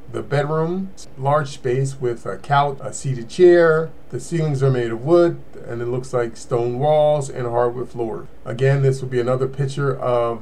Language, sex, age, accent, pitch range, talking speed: English, male, 40-59, American, 125-150 Hz, 185 wpm